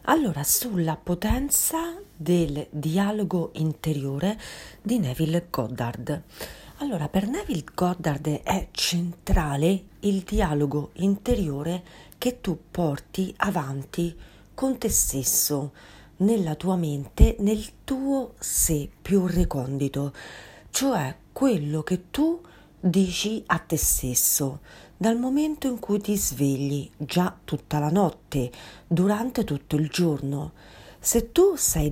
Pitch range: 150-210 Hz